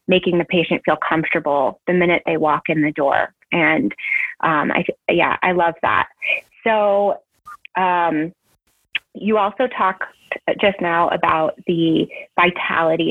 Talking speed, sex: 135 wpm, female